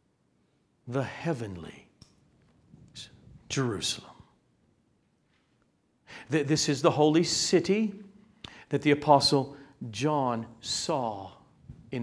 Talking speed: 70 wpm